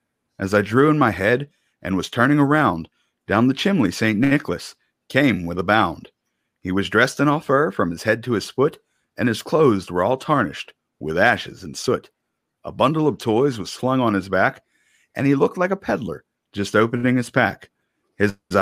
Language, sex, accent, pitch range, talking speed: English, male, American, 105-145 Hz, 195 wpm